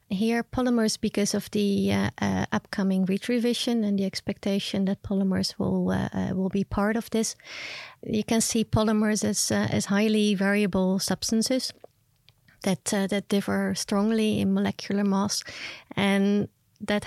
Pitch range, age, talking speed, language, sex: 180-205 Hz, 30-49, 150 wpm, English, female